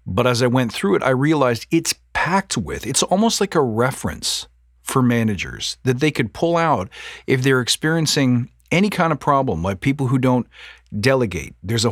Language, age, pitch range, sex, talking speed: English, 50-69, 105-140 Hz, male, 185 wpm